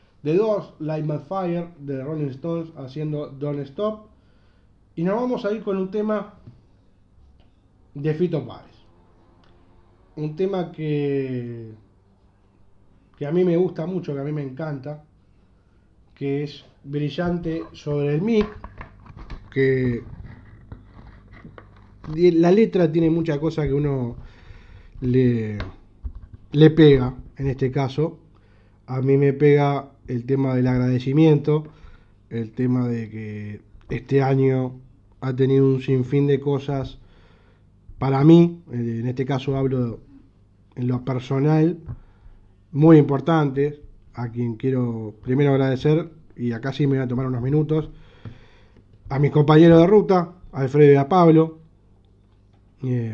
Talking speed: 130 wpm